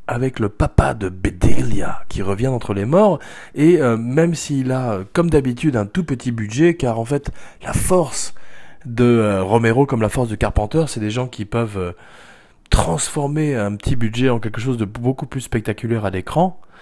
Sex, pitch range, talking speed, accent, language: male, 105-145 Hz, 190 wpm, French, French